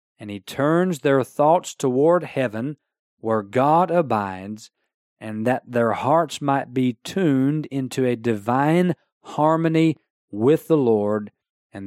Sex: male